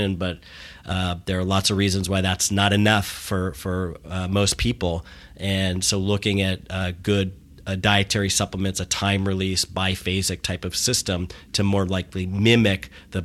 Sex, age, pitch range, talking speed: male, 40-59, 95-110 Hz, 170 wpm